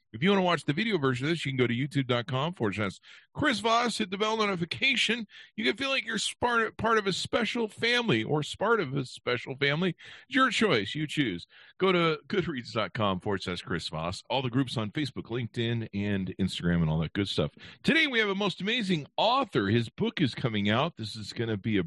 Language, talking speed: English, 210 wpm